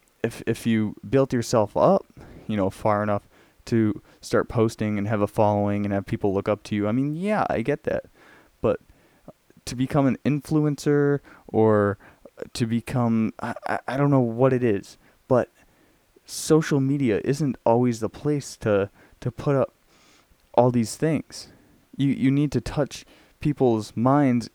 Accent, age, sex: American, 20-39, male